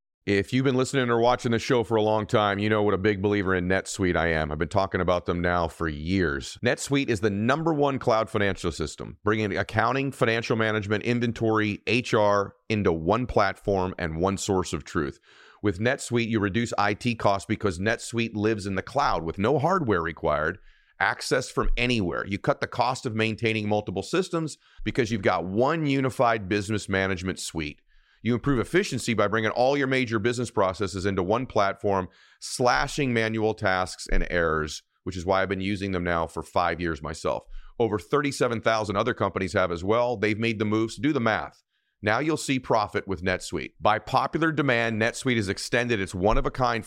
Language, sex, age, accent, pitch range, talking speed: English, male, 40-59, American, 95-120 Hz, 185 wpm